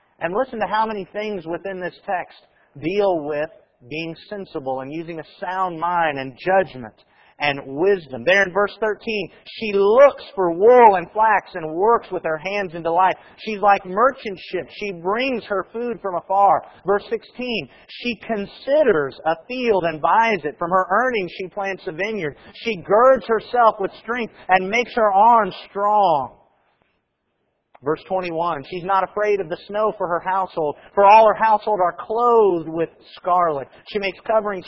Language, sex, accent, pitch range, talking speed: English, male, American, 180-225 Hz, 170 wpm